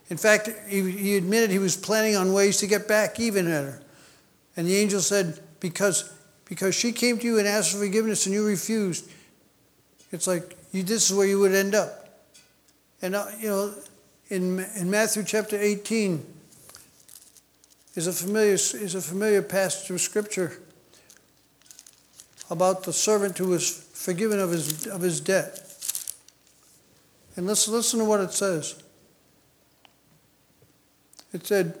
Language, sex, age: English, male, 60-79